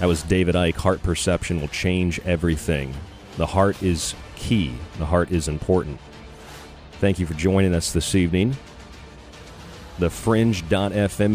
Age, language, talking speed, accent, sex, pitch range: 40-59, English, 130 wpm, American, male, 80-100 Hz